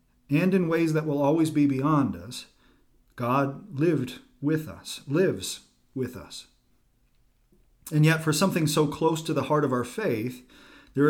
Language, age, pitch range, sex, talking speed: English, 40-59, 125-150 Hz, male, 155 wpm